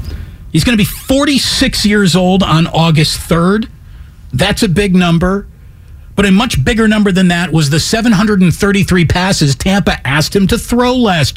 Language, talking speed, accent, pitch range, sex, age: English, 165 wpm, American, 135-225 Hz, male, 50-69